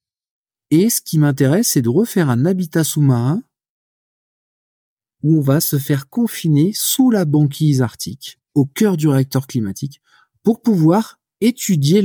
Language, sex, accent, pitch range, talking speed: French, male, French, 135-195 Hz, 140 wpm